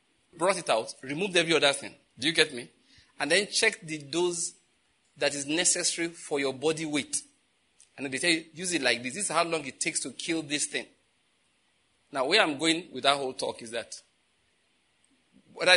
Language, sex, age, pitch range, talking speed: English, male, 40-59, 135-175 Hz, 200 wpm